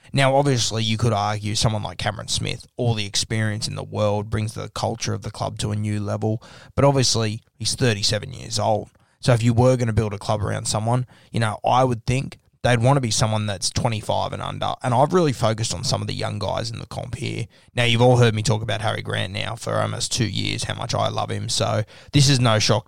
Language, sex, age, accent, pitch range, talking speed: English, male, 20-39, Australian, 110-120 Hz, 245 wpm